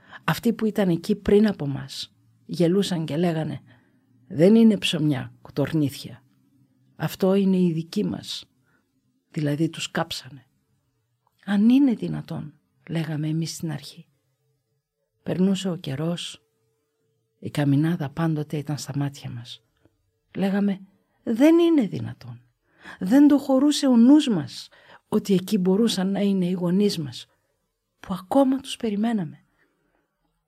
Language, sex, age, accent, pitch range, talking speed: Greek, female, 50-69, native, 155-235 Hz, 120 wpm